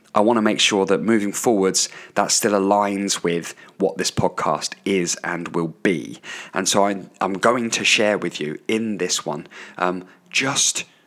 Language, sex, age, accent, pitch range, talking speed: English, male, 20-39, British, 90-110 Hz, 180 wpm